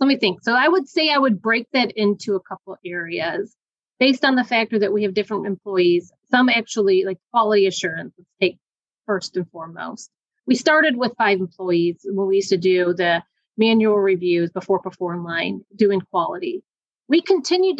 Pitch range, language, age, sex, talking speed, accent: 190-230 Hz, English, 30-49, female, 180 wpm, American